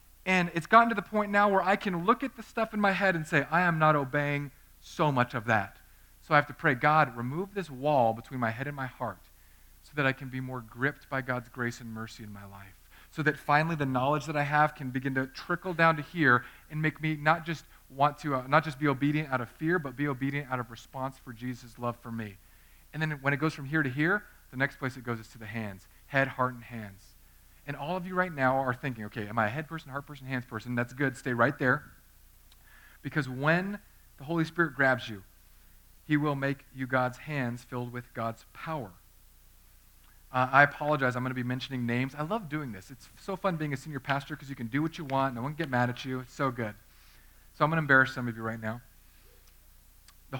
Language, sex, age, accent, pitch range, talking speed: English, male, 40-59, American, 120-150 Hz, 250 wpm